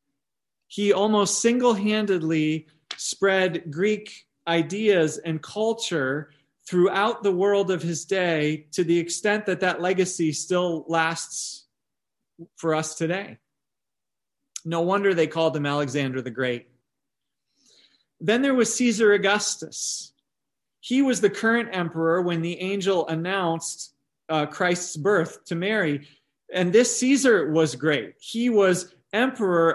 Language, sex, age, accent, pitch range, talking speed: English, male, 40-59, American, 160-210 Hz, 120 wpm